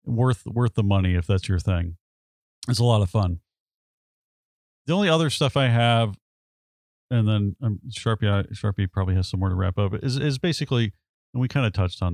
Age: 40-59